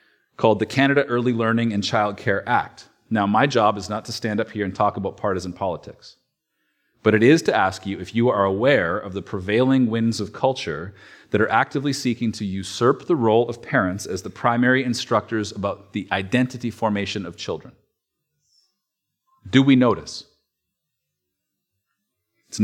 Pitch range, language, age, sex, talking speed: 105-130 Hz, English, 40-59, male, 165 wpm